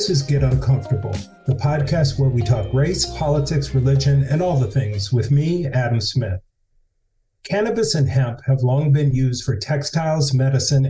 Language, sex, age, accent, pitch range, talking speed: English, male, 40-59, American, 120-145 Hz, 165 wpm